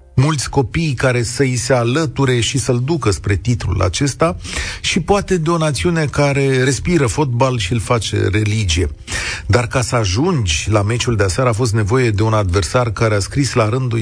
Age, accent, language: 40-59, native, Romanian